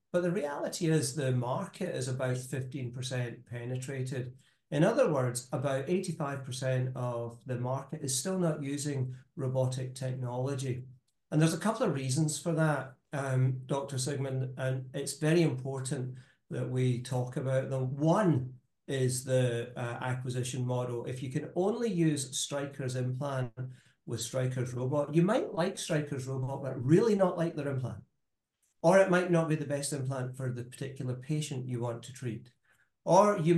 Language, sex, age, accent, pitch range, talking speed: English, male, 40-59, British, 125-155 Hz, 160 wpm